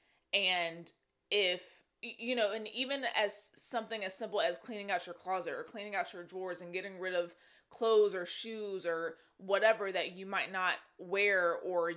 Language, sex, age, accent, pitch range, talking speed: English, female, 20-39, American, 175-225 Hz, 175 wpm